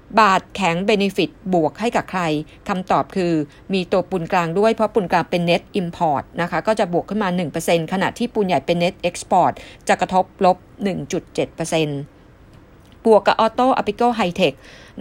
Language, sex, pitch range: Thai, female, 180-225 Hz